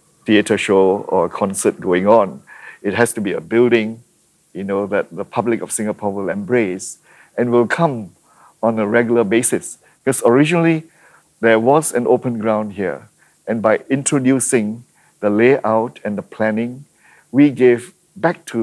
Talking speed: 155 wpm